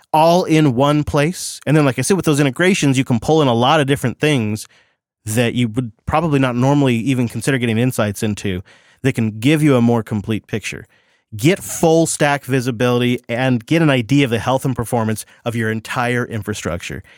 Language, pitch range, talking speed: English, 115-150 Hz, 200 wpm